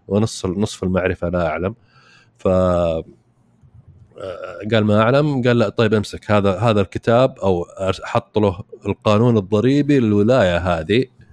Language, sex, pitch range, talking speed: Arabic, male, 100-130 Hz, 115 wpm